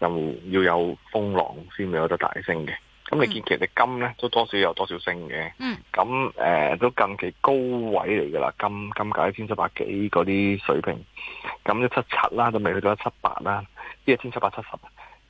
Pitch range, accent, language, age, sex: 100-130 Hz, native, Chinese, 30-49, male